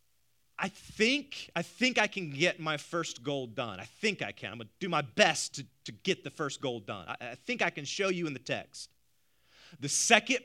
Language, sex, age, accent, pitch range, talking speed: English, male, 30-49, American, 125-180 Hz, 225 wpm